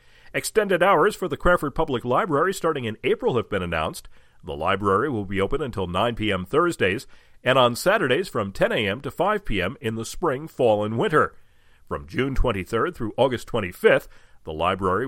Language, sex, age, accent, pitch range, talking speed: English, male, 40-59, American, 105-155 Hz, 180 wpm